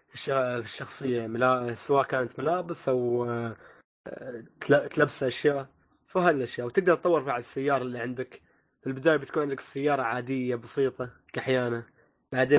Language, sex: Arabic, male